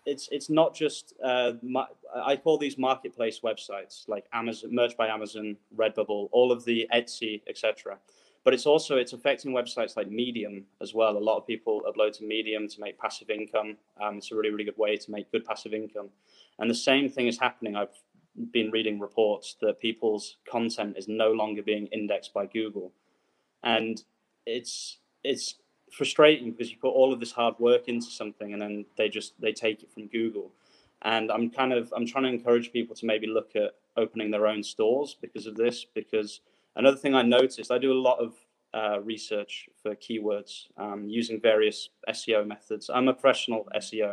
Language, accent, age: English, British, 20-39